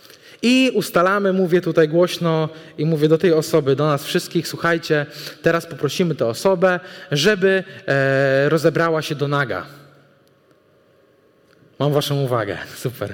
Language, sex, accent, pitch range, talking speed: Polish, male, native, 155-200 Hz, 125 wpm